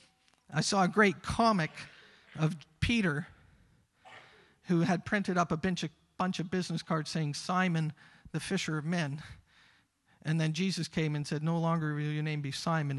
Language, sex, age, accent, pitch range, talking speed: English, male, 50-69, American, 130-175 Hz, 160 wpm